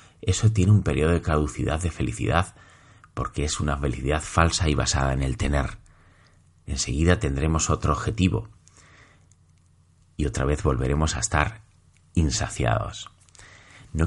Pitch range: 75-105 Hz